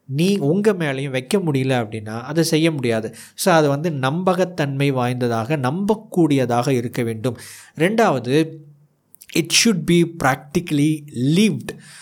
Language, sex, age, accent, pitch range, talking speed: Tamil, male, 20-39, native, 130-165 Hz, 115 wpm